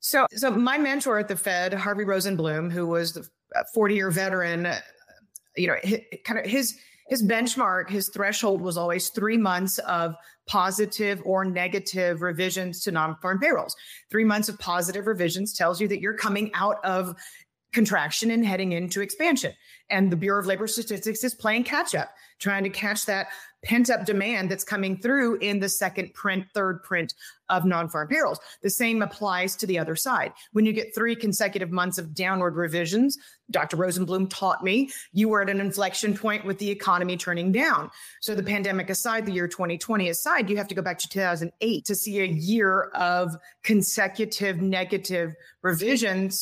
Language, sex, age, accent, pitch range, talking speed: English, female, 30-49, American, 180-215 Hz, 175 wpm